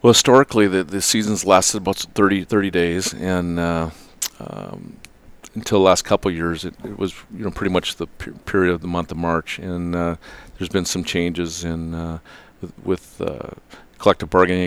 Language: English